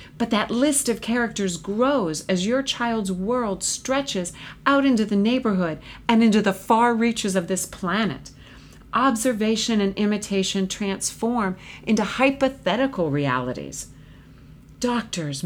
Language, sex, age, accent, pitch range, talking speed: English, female, 40-59, American, 170-230 Hz, 120 wpm